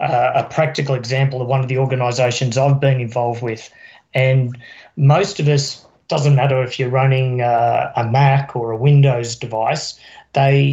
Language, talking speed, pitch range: English, 170 wpm, 125-140 Hz